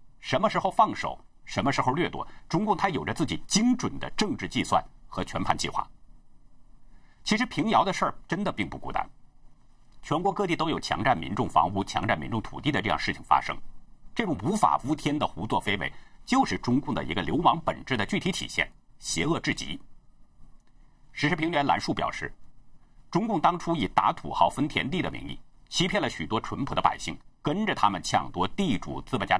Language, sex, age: Chinese, male, 50-69